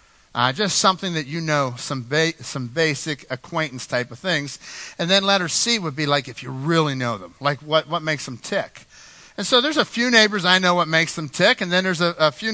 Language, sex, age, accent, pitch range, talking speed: English, male, 50-69, American, 150-205 Hz, 240 wpm